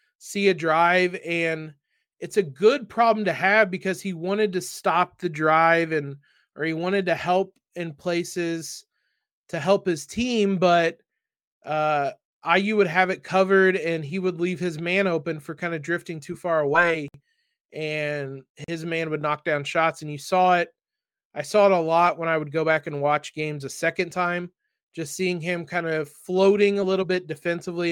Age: 20-39